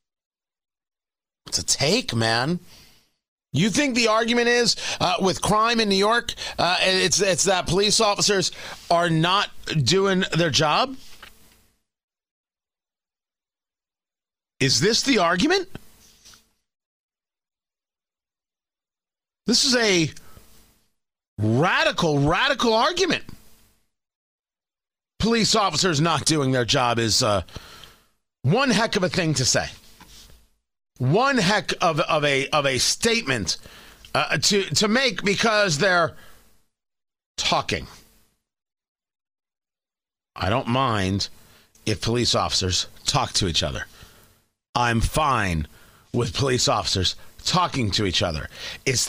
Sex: male